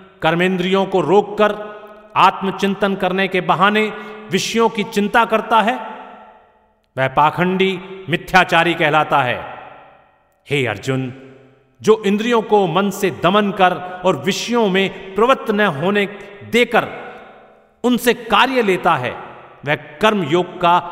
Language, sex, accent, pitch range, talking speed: Hindi, male, native, 160-205 Hz, 115 wpm